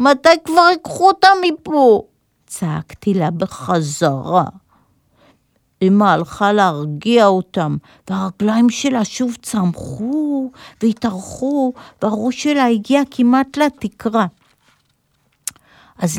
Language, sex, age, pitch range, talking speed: Hebrew, female, 50-69, 195-275 Hz, 85 wpm